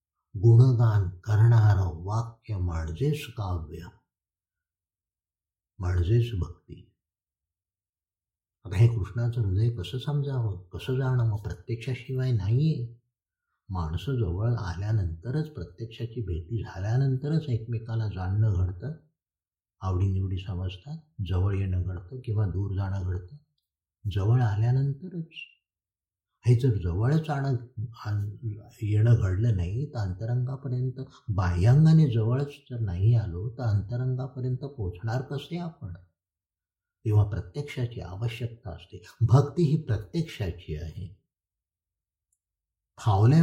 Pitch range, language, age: 90-125 Hz, Marathi, 60-79